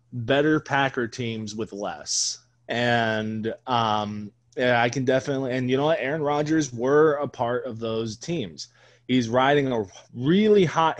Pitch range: 115-135 Hz